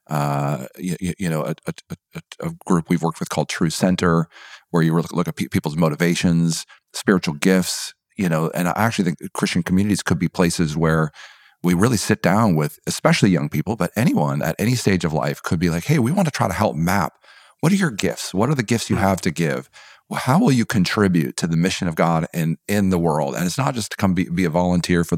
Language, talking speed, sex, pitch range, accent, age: English, 230 wpm, male, 85-100 Hz, American, 40-59